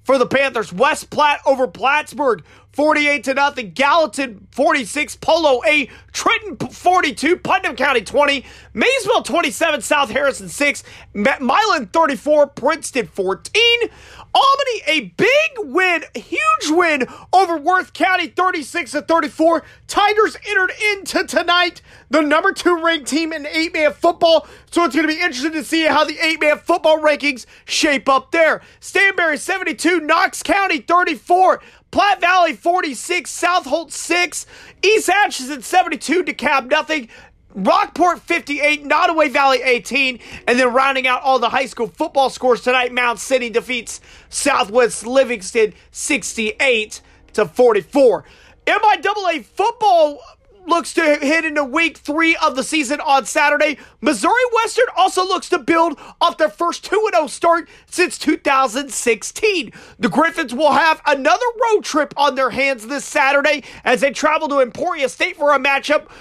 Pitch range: 275-350 Hz